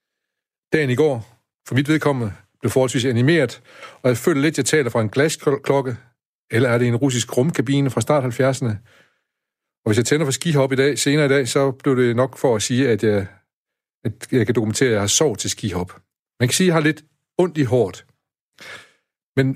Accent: native